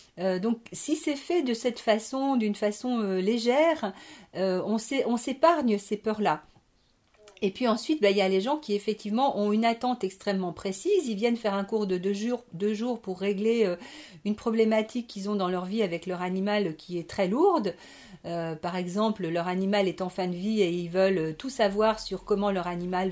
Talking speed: 210 wpm